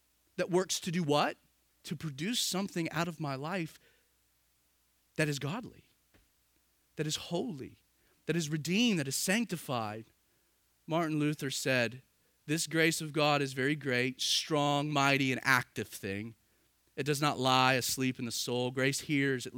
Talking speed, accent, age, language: 155 wpm, American, 30-49, English